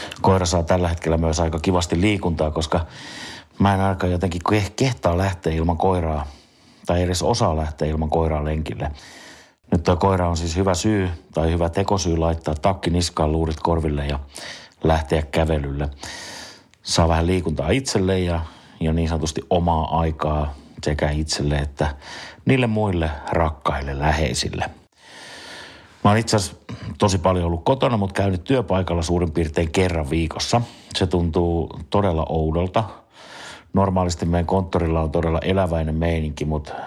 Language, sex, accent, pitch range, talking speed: Finnish, male, native, 80-95 Hz, 140 wpm